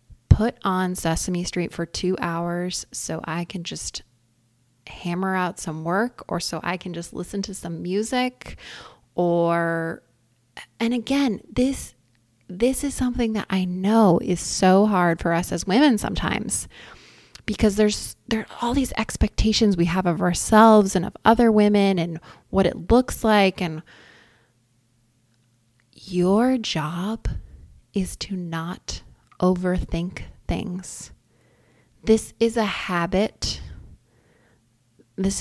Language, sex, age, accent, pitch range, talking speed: English, female, 20-39, American, 165-195 Hz, 125 wpm